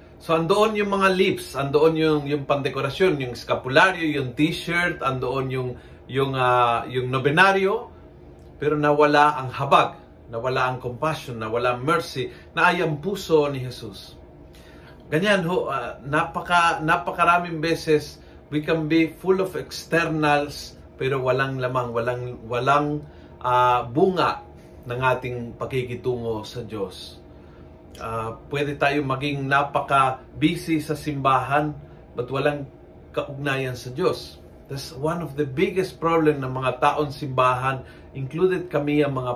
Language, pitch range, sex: Filipino, 125-155 Hz, male